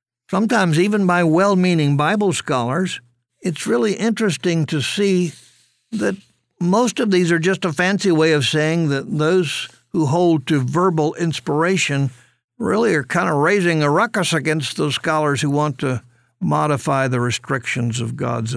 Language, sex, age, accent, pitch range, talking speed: English, male, 60-79, American, 125-165 Hz, 150 wpm